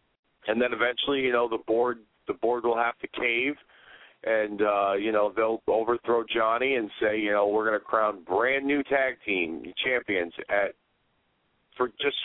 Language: English